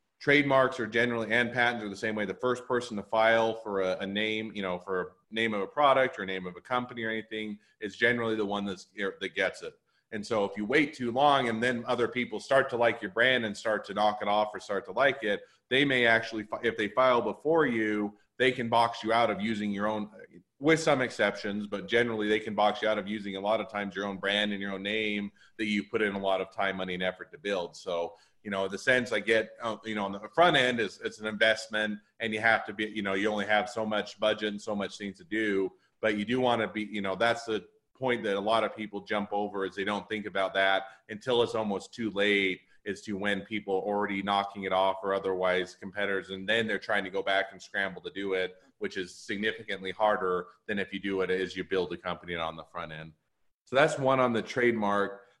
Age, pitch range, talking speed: 30-49, 100-115 Hz, 255 wpm